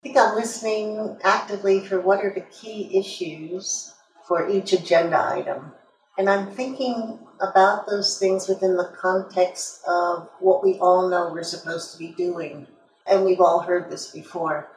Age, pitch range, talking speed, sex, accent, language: 50-69, 175-205 Hz, 165 wpm, female, American, English